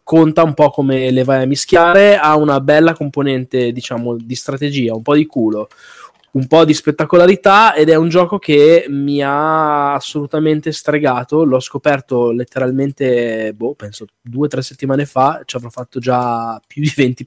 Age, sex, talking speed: 20-39, male, 170 wpm